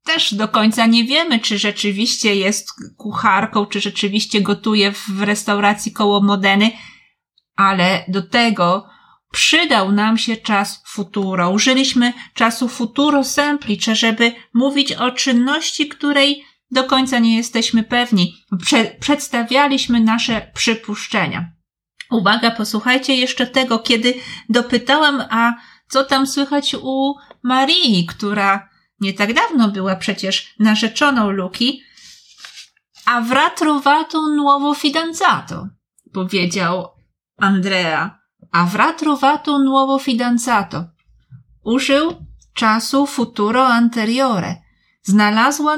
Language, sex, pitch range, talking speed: Italian, female, 205-265 Hz, 100 wpm